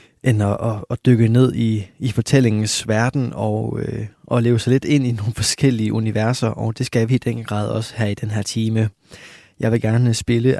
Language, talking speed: Danish, 215 wpm